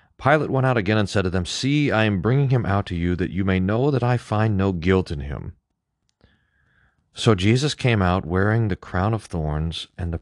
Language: English